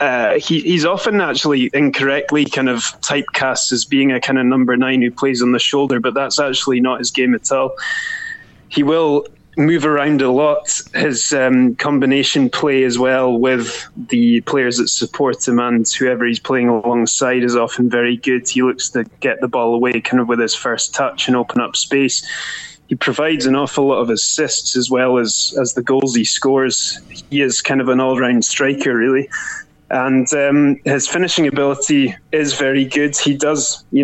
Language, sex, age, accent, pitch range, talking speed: English, male, 20-39, British, 125-140 Hz, 190 wpm